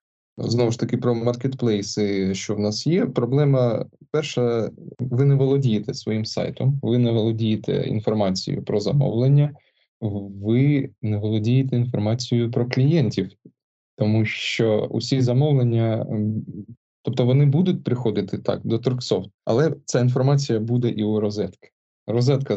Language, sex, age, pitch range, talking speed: Ukrainian, male, 20-39, 105-130 Hz, 125 wpm